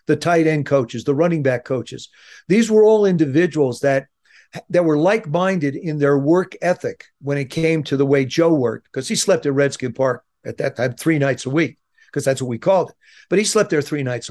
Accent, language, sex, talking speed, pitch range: American, English, male, 220 wpm, 140-180 Hz